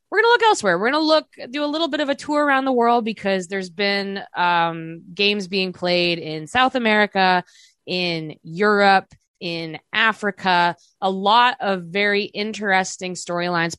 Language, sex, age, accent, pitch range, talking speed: English, female, 20-39, American, 170-215 Hz, 170 wpm